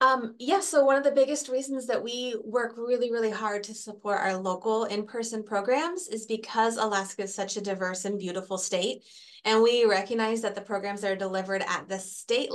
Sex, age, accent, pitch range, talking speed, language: female, 30-49, American, 195-235 Hz, 205 wpm, English